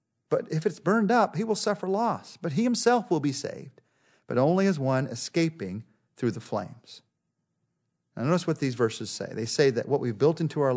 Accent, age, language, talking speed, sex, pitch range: American, 40-59, English, 205 wpm, male, 130-175 Hz